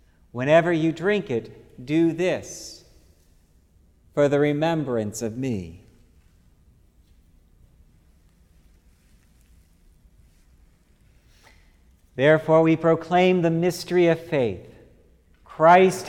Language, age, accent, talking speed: English, 50-69, American, 70 wpm